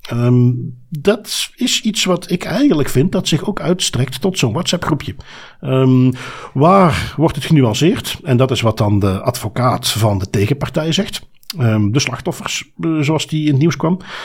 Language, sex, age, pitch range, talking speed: Dutch, male, 50-69, 115-145 Hz, 160 wpm